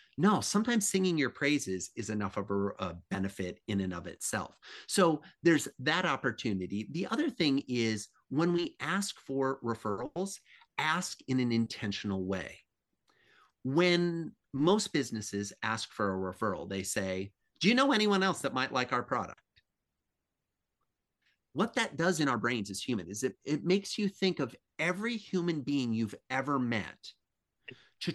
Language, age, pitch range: English, 30-49, 100-155 Hz